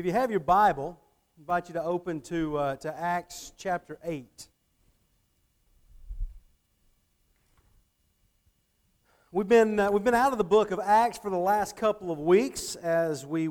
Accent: American